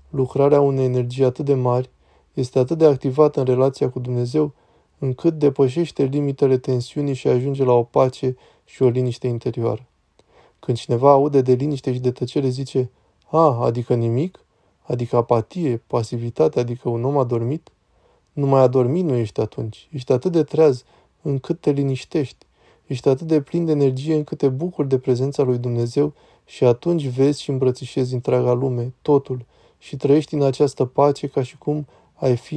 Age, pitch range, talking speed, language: 20-39, 125-145 Hz, 170 wpm, Romanian